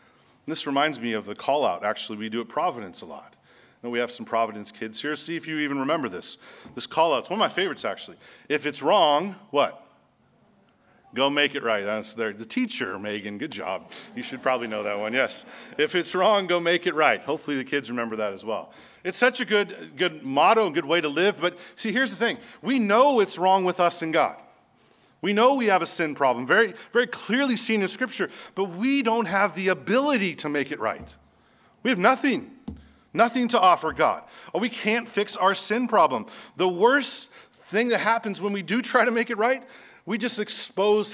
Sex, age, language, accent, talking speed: male, 40-59, English, American, 215 wpm